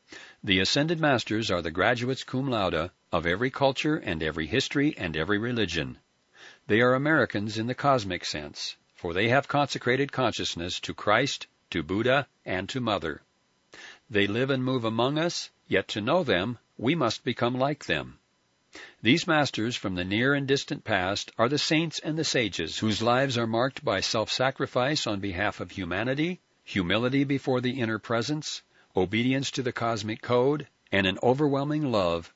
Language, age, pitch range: English, 60-79, 100-140 Hz